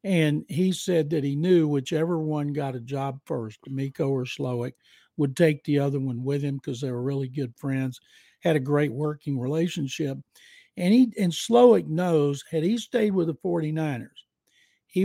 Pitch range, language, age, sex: 140-170 Hz, English, 60-79, male